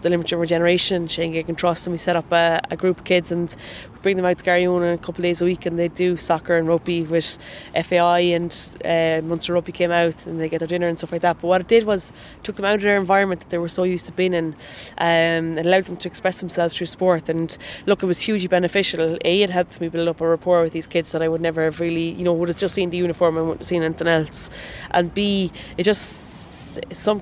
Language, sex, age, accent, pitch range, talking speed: English, female, 20-39, Irish, 170-185 Hz, 270 wpm